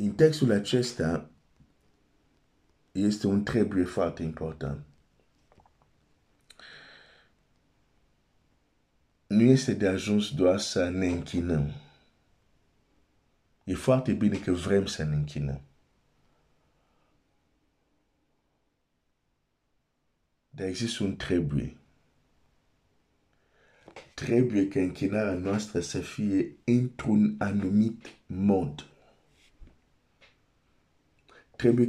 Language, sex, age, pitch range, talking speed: Romanian, male, 50-69, 85-110 Hz, 70 wpm